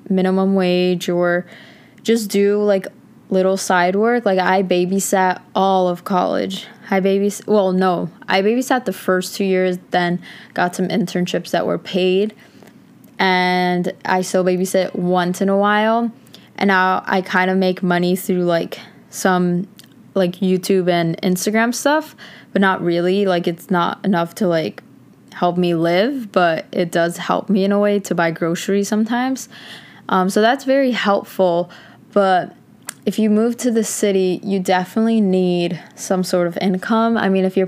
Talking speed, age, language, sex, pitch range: 160 wpm, 20-39, English, female, 180-210 Hz